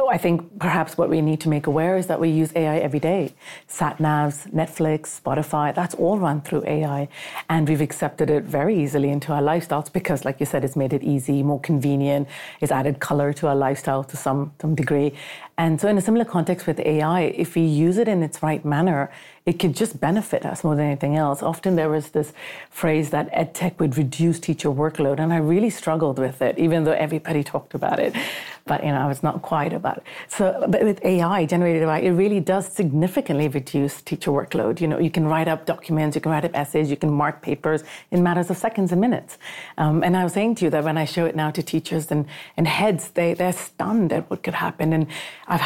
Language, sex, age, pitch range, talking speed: English, female, 40-59, 150-175 Hz, 225 wpm